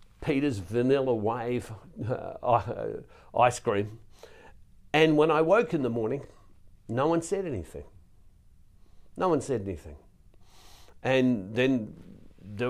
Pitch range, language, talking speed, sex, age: 95-140 Hz, English, 115 wpm, male, 60-79